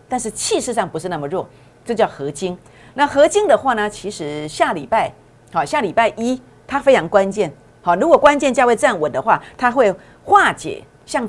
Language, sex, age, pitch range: Chinese, female, 50-69, 180-265 Hz